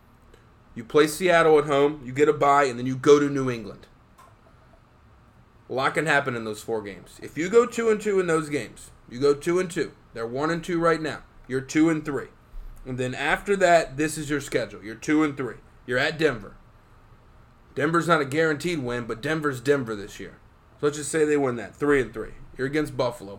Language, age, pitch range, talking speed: English, 30-49, 130-160 Hz, 220 wpm